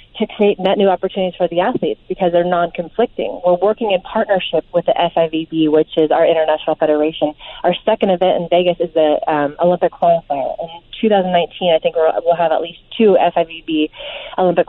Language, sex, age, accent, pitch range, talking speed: English, female, 30-49, American, 170-205 Hz, 185 wpm